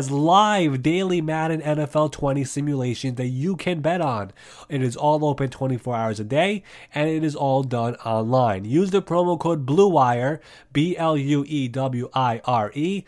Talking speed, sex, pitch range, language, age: 140 wpm, male, 130-160 Hz, English, 30-49